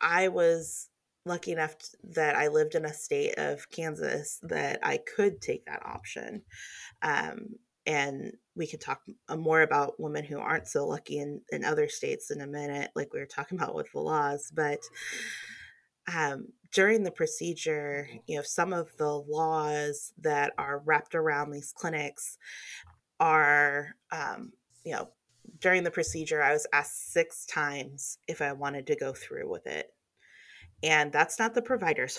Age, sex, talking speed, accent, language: 20-39, female, 160 wpm, American, English